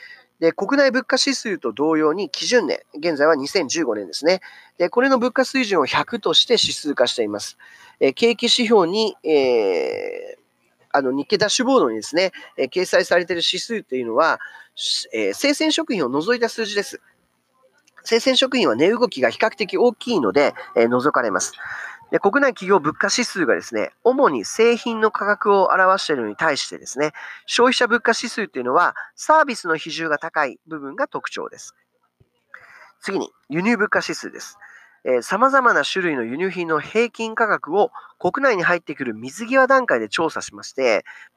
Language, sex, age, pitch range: Japanese, male, 40-59, 185-270 Hz